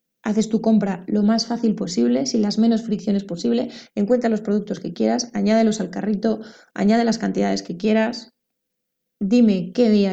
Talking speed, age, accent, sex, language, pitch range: 165 wpm, 20-39, Spanish, female, Spanish, 200-235 Hz